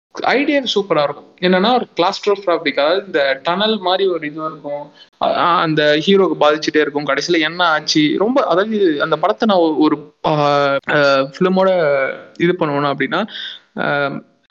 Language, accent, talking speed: Tamil, native, 130 wpm